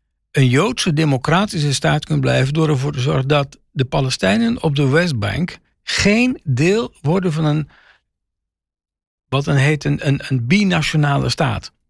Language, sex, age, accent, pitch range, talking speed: Dutch, male, 50-69, Dutch, 130-185 Hz, 145 wpm